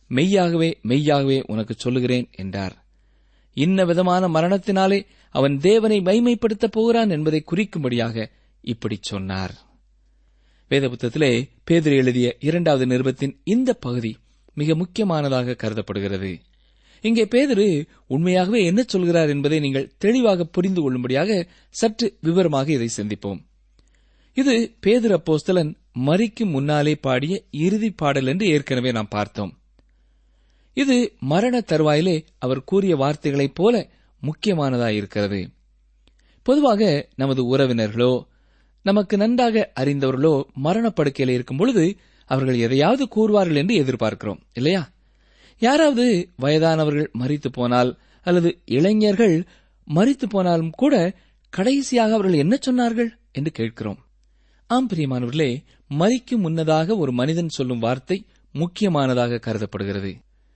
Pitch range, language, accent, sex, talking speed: 125-200 Hz, Tamil, native, male, 95 wpm